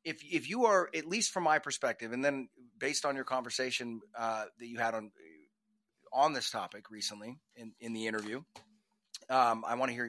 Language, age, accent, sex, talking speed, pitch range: English, 30-49, American, male, 195 wpm, 130-185 Hz